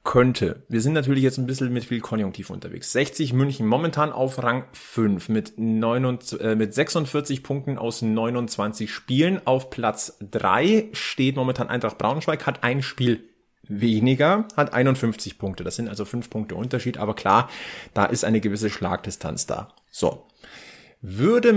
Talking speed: 155 wpm